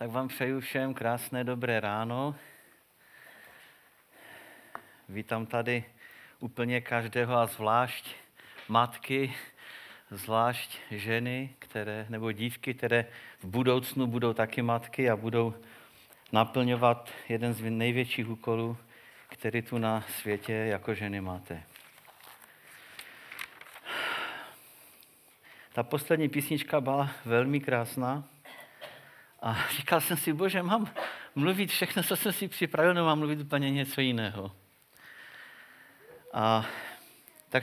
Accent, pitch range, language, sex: native, 115-150 Hz, Czech, male